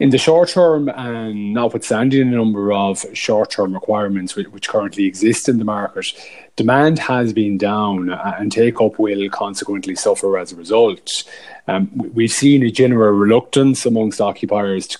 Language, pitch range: English, 105-135 Hz